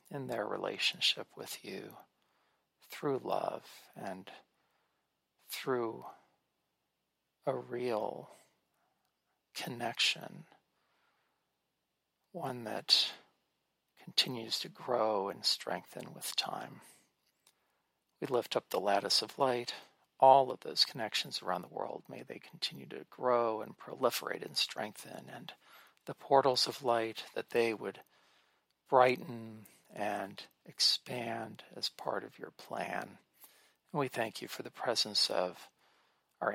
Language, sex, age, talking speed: English, male, 40-59, 115 wpm